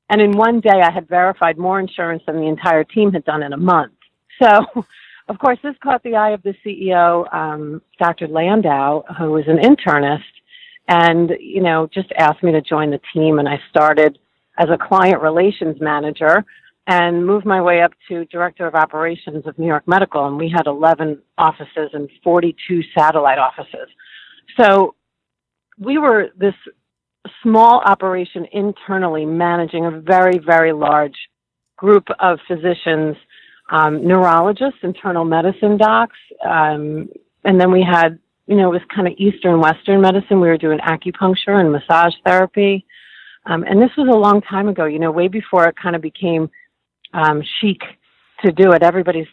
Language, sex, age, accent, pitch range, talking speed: English, female, 50-69, American, 155-195 Hz, 170 wpm